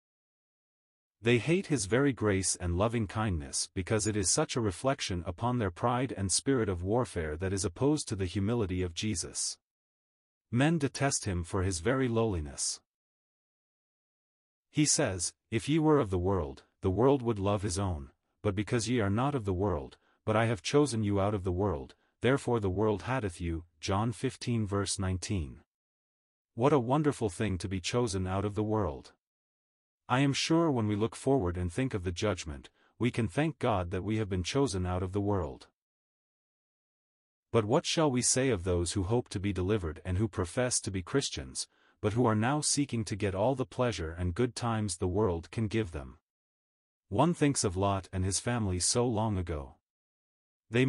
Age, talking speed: 40-59, 185 wpm